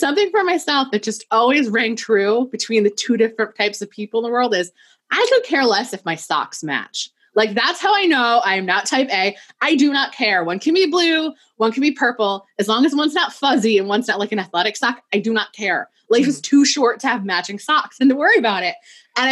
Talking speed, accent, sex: 250 wpm, American, female